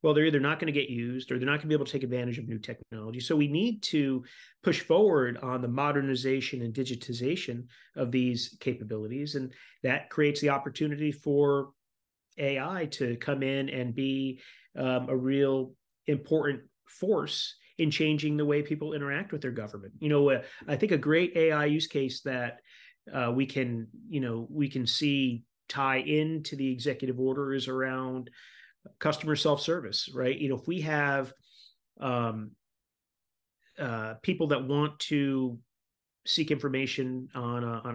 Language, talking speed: English, 170 wpm